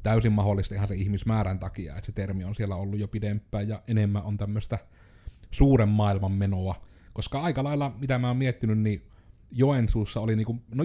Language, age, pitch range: Finnish, 30-49, 95-115 Hz